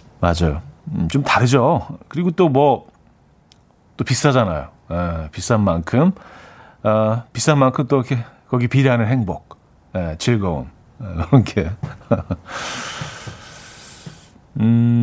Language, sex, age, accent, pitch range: Korean, male, 40-59, native, 105-140 Hz